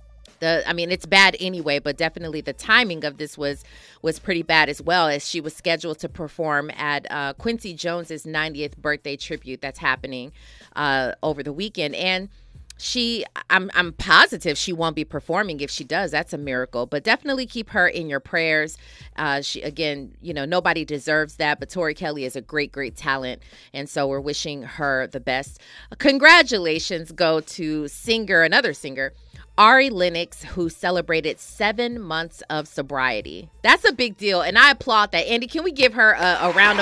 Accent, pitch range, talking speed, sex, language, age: American, 150-205 Hz, 185 wpm, female, English, 30-49